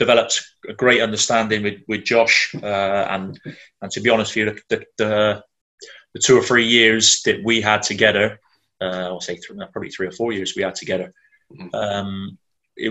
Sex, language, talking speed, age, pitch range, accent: male, English, 190 wpm, 20-39, 100-115 Hz, British